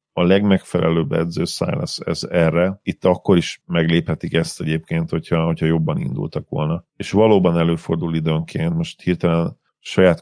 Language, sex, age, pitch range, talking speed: Hungarian, male, 40-59, 80-90 Hz, 140 wpm